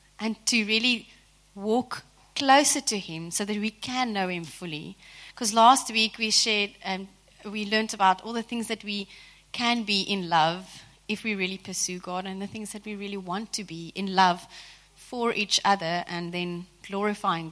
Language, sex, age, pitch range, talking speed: English, female, 30-49, 180-235 Hz, 185 wpm